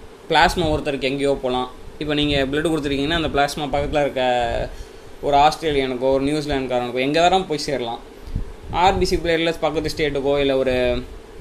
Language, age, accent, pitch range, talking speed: Tamil, 20-39, native, 135-165 Hz, 135 wpm